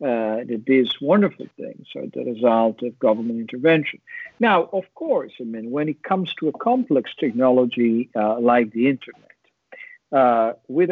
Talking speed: 155 wpm